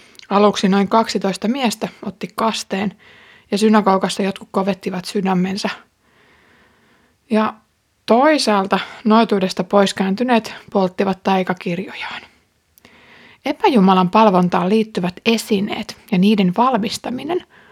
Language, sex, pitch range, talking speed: Finnish, female, 190-225 Hz, 85 wpm